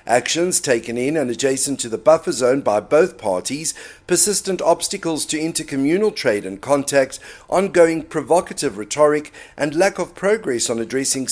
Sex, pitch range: male, 130-175 Hz